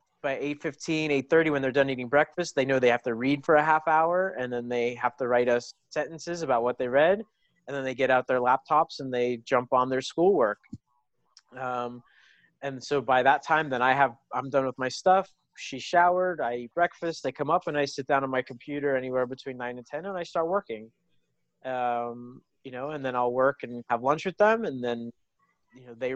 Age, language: 30-49, English